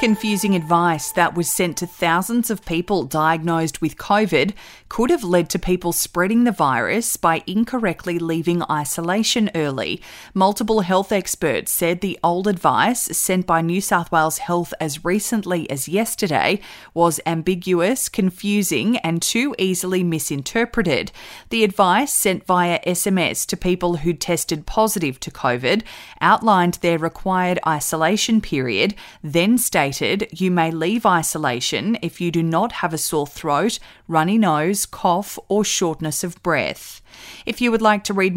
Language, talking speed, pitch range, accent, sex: English, 145 wpm, 165-205 Hz, Australian, female